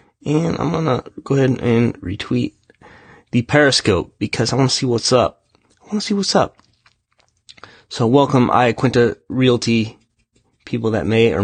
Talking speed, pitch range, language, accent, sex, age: 155 wpm, 105-130 Hz, English, American, male, 20-39